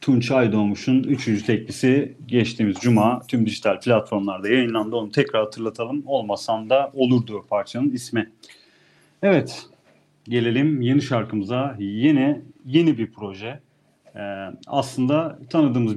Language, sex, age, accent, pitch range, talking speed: Turkish, male, 40-59, native, 110-140 Hz, 110 wpm